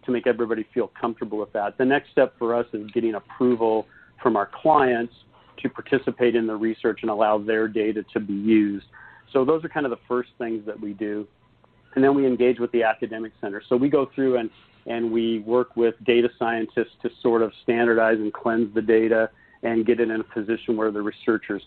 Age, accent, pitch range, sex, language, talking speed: 40-59, American, 110-120 Hz, male, English, 215 wpm